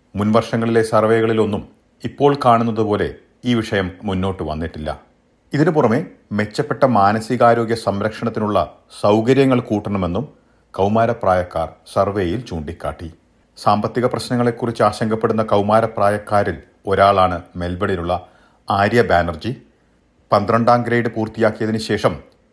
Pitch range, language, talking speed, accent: 95-120 Hz, Malayalam, 75 wpm, native